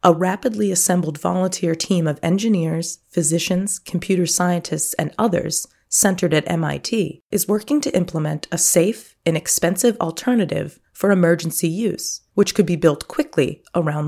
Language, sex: English, female